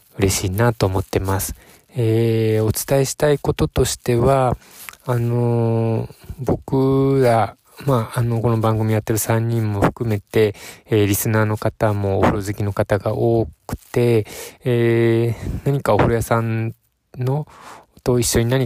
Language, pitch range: Japanese, 100-120 Hz